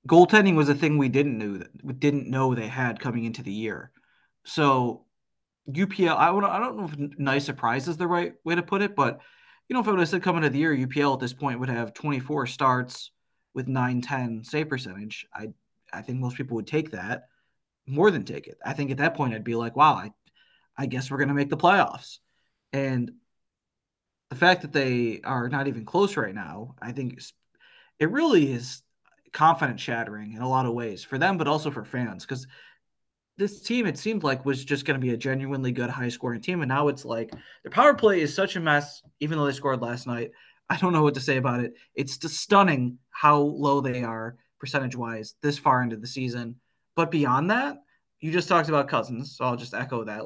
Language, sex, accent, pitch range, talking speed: English, male, American, 120-150 Hz, 215 wpm